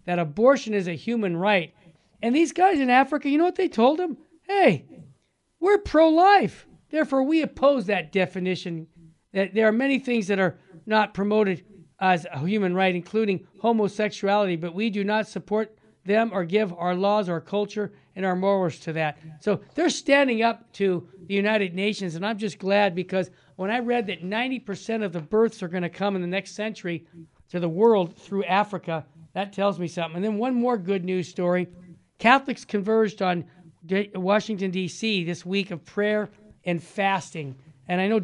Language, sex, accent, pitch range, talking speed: English, male, American, 175-220 Hz, 180 wpm